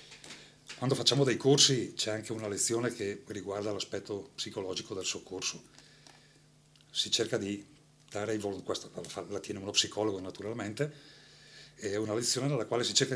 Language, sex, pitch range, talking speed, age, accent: Italian, male, 115-145 Hz, 150 wpm, 40-59, native